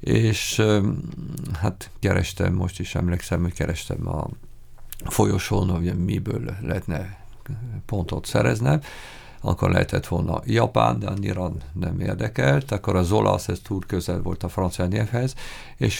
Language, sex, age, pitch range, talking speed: Hungarian, male, 50-69, 90-115 Hz, 130 wpm